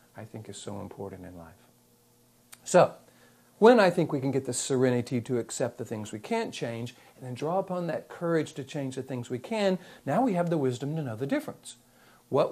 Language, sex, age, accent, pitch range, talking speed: English, male, 60-79, American, 120-170 Hz, 215 wpm